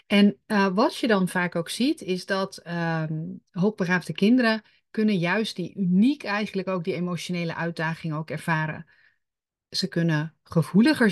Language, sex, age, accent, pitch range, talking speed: Dutch, female, 40-59, Dutch, 165-205 Hz, 145 wpm